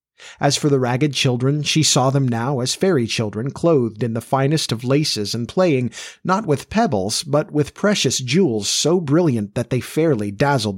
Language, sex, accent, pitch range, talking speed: English, male, American, 115-150 Hz, 185 wpm